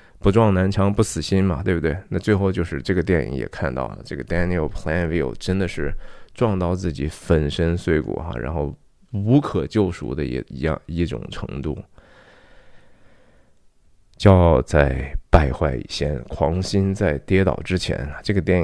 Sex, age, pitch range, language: male, 20-39, 80-105 Hz, Chinese